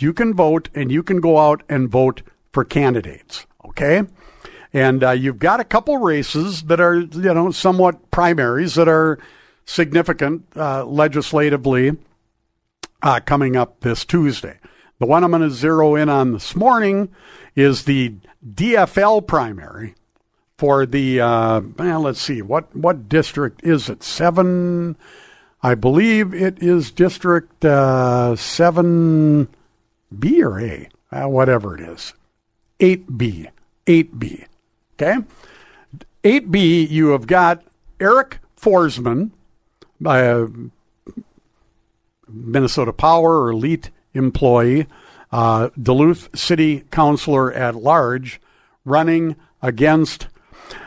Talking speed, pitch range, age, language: 115 wpm, 130-170 Hz, 60-79, English